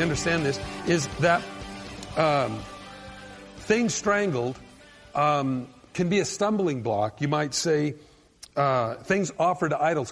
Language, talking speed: English, 125 wpm